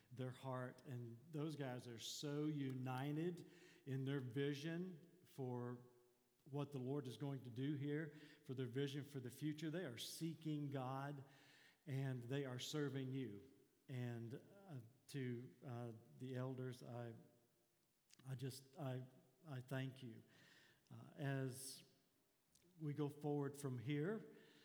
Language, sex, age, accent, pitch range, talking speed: English, male, 50-69, American, 125-150 Hz, 135 wpm